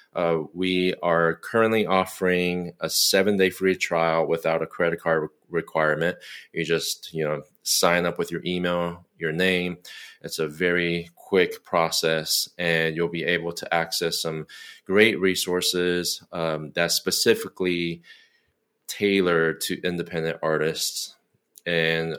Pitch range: 80-90 Hz